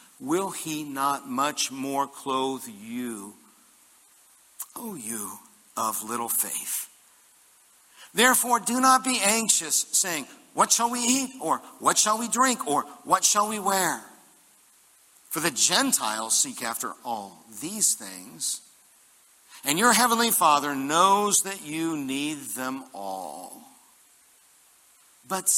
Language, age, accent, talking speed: English, 60-79, American, 120 wpm